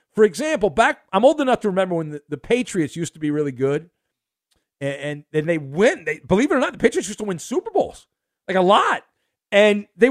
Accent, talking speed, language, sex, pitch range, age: American, 230 wpm, English, male, 170-245 Hz, 40-59